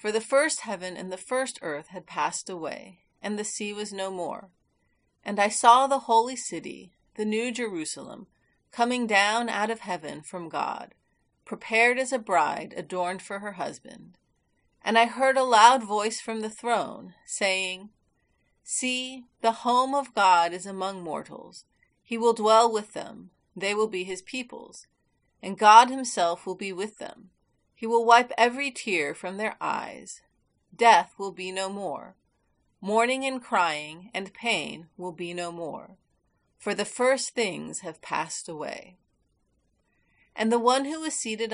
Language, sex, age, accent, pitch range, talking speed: English, female, 40-59, American, 185-235 Hz, 160 wpm